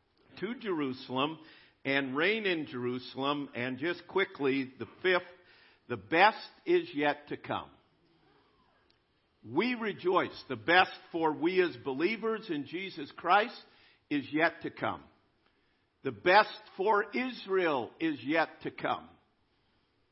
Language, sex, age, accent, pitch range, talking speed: English, male, 50-69, American, 125-185 Hz, 120 wpm